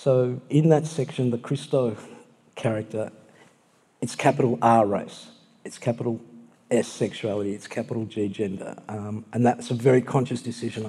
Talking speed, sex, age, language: 145 wpm, male, 50-69, English